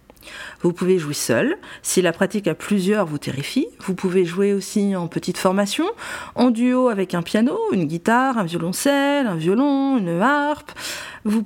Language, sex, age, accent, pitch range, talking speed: French, female, 40-59, French, 185-255 Hz, 170 wpm